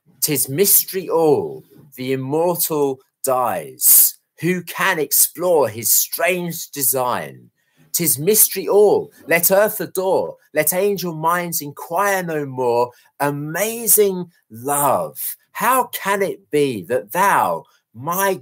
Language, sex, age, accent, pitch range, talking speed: English, male, 40-59, British, 110-150 Hz, 110 wpm